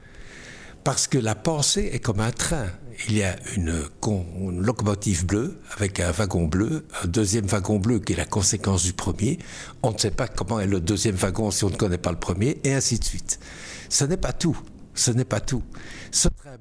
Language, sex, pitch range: French, male, 100-130 Hz